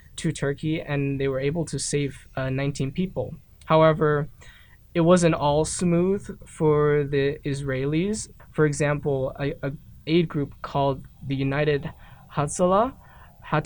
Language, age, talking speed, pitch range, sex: English, 20-39, 130 wpm, 135-160 Hz, male